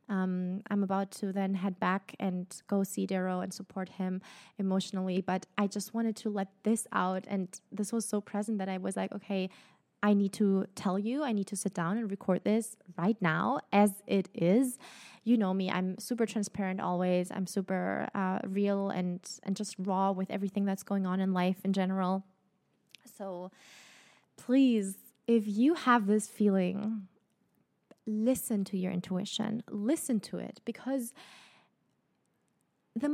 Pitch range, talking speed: 195-240 Hz, 165 wpm